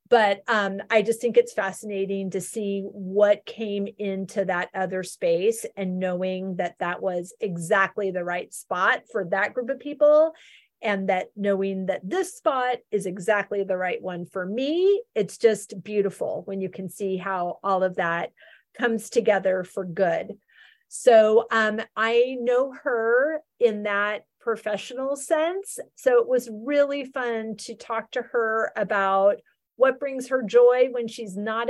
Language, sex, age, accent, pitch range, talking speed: English, female, 40-59, American, 200-260 Hz, 155 wpm